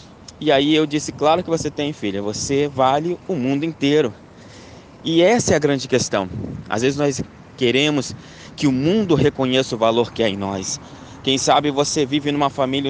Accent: Brazilian